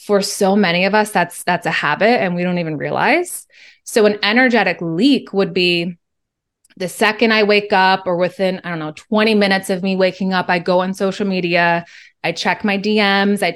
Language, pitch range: English, 180-215 Hz